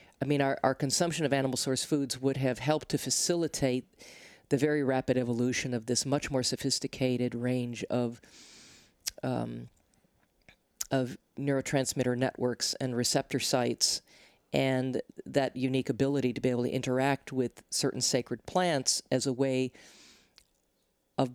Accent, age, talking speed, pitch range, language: American, 40-59, 140 wpm, 125-140 Hz, English